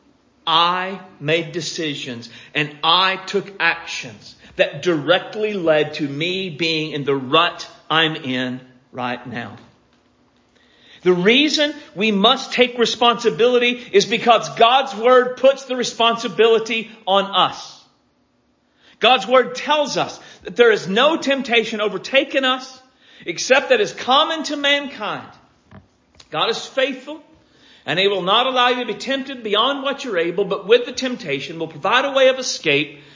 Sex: male